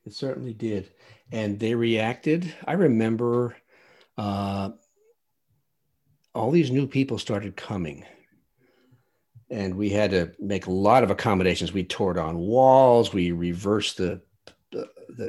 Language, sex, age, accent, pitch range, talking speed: English, male, 50-69, American, 100-130 Hz, 125 wpm